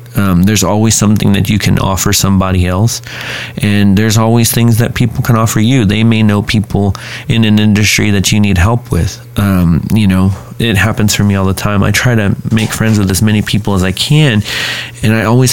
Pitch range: 95-110 Hz